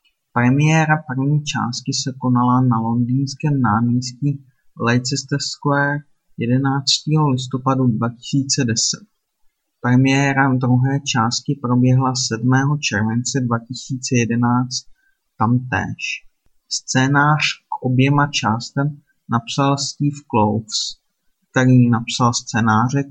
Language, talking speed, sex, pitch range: Czech, 80 wpm, male, 120-140 Hz